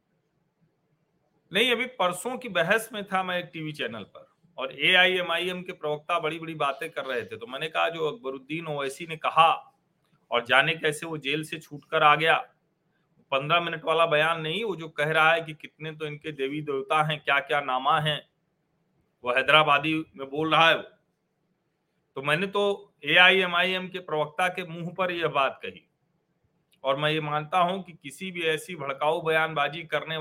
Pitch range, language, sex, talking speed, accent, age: 150-185 Hz, Hindi, male, 175 wpm, native, 40-59